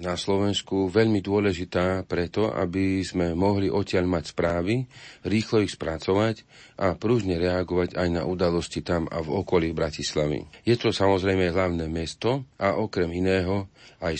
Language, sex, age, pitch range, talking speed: Slovak, male, 40-59, 85-105 Hz, 140 wpm